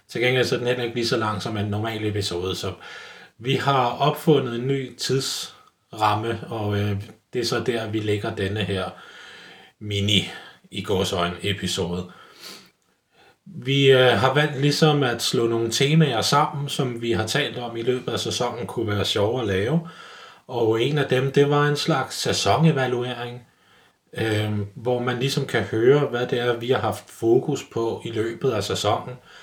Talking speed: 165 wpm